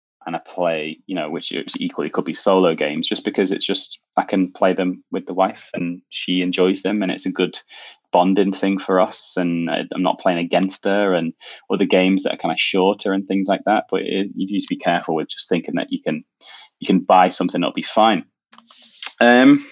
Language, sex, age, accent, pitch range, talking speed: English, male, 20-39, British, 95-150 Hz, 220 wpm